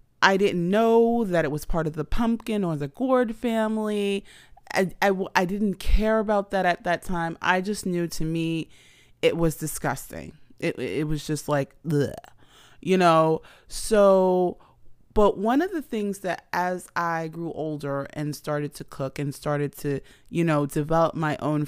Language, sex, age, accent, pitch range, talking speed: English, female, 30-49, American, 150-195 Hz, 175 wpm